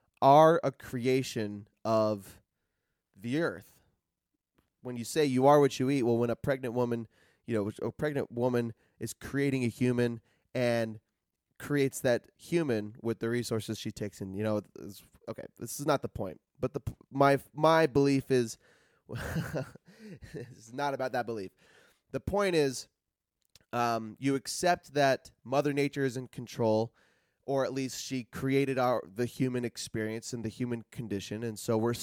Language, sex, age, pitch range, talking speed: English, male, 20-39, 110-135 Hz, 160 wpm